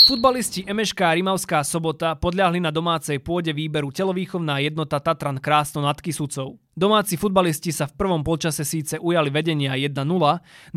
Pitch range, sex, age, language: 145-180 Hz, male, 20-39, Slovak